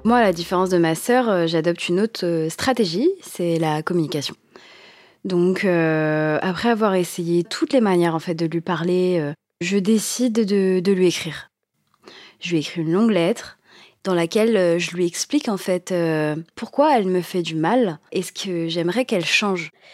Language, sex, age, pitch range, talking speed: French, female, 20-39, 175-215 Hz, 180 wpm